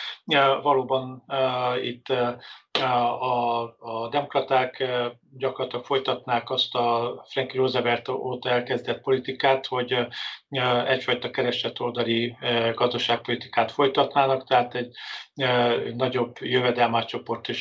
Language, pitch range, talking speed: Hungarian, 120-130 Hz, 75 wpm